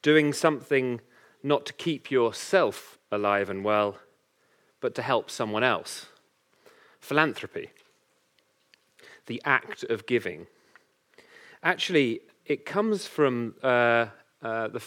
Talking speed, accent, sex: 105 wpm, British, male